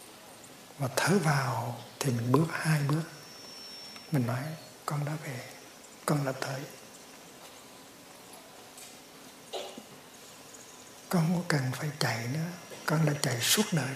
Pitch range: 130-155 Hz